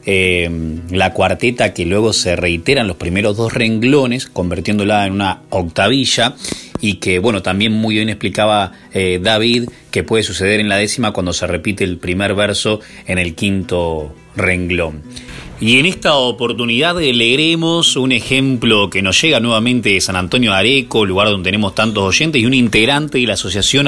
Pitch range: 95-125 Hz